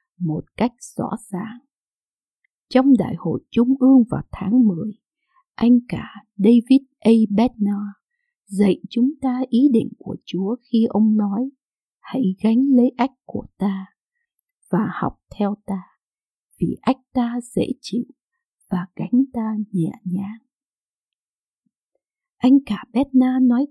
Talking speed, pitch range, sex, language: 130 wpm, 210-270 Hz, female, Vietnamese